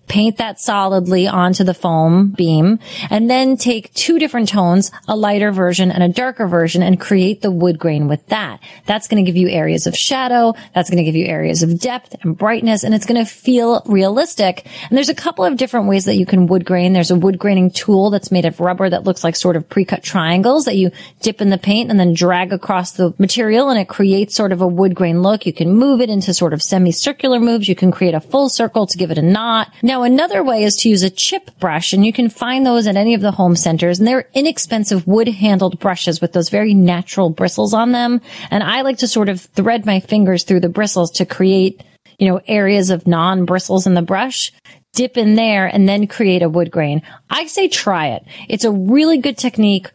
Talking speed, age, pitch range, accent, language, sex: 235 wpm, 30-49, 180-225 Hz, American, English, female